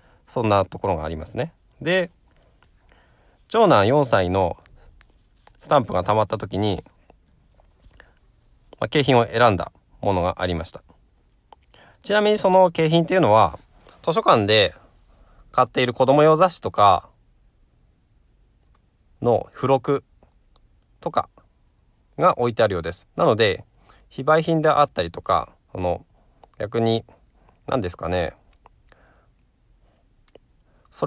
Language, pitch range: Japanese, 90-145 Hz